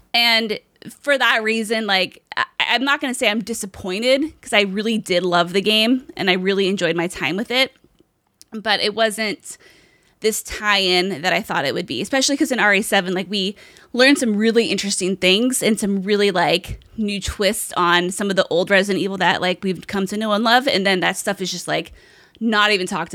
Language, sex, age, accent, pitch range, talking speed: English, female, 20-39, American, 190-240 Hz, 205 wpm